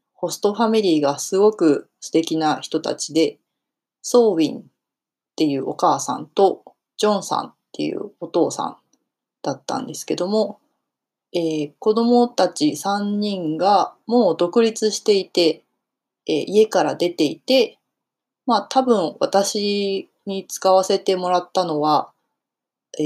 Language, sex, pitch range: Japanese, female, 165-230 Hz